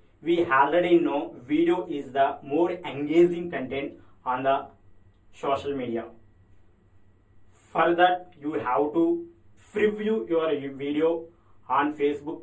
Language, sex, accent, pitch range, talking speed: English, male, Indian, 125-170 Hz, 110 wpm